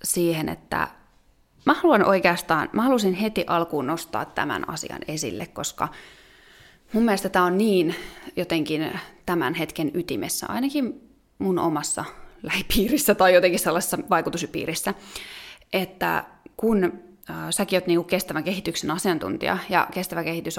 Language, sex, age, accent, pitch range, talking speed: Finnish, female, 20-39, native, 170-200 Hz, 120 wpm